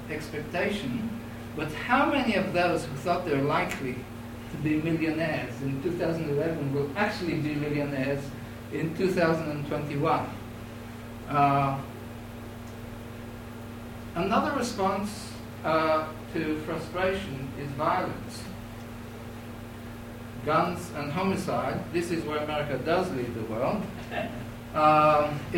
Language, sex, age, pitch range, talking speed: English, male, 50-69, 115-180 Hz, 100 wpm